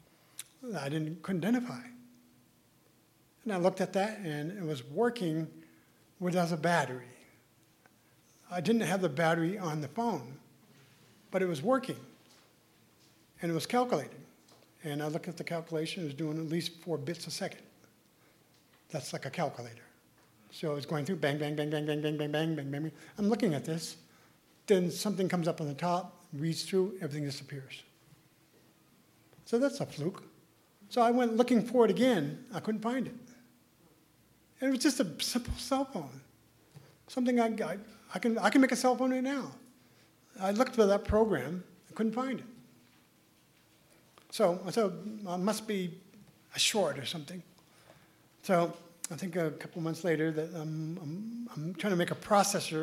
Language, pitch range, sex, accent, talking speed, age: English, 155-215 Hz, male, American, 170 wpm, 60-79